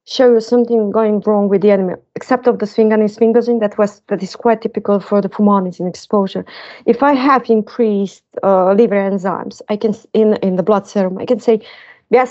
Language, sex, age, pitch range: English, female, 30-49, 200-230 Hz